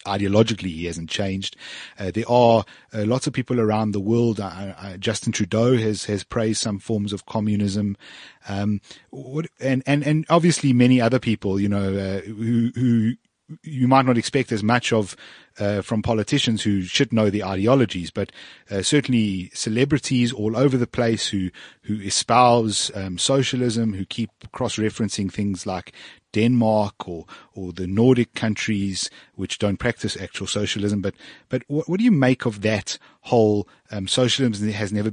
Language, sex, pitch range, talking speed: English, male, 100-125 Hz, 165 wpm